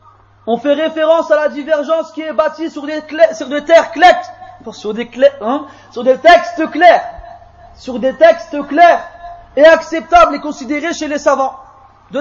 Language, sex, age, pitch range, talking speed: French, male, 30-49, 265-335 Hz, 165 wpm